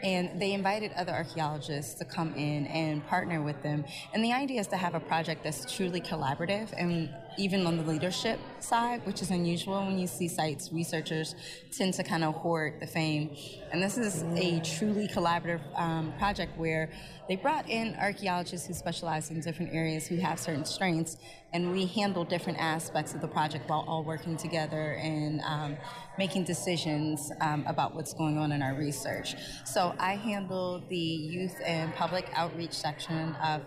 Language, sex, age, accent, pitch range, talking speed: English, female, 20-39, American, 155-180 Hz, 180 wpm